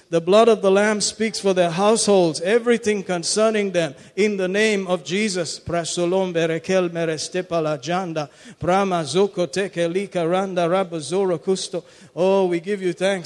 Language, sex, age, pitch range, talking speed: English, male, 50-69, 175-205 Hz, 90 wpm